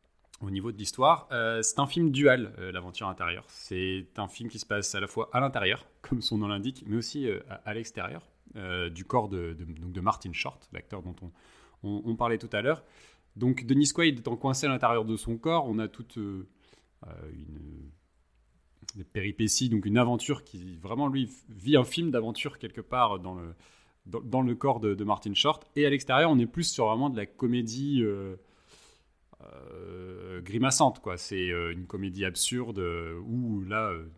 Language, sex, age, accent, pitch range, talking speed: French, male, 30-49, French, 95-125 Hz, 200 wpm